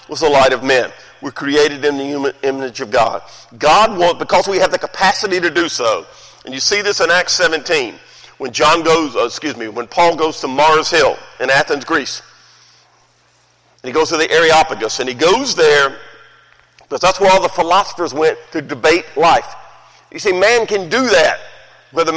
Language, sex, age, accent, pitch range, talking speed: English, male, 50-69, American, 155-205 Hz, 190 wpm